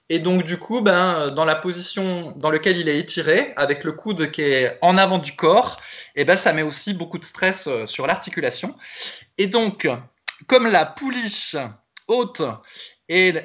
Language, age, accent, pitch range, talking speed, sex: French, 20-39, French, 160-210 Hz, 175 wpm, male